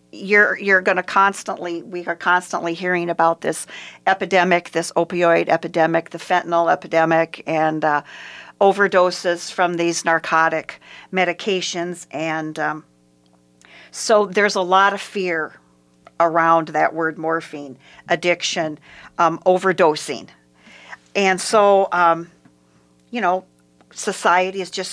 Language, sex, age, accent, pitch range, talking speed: English, female, 50-69, American, 155-185 Hz, 115 wpm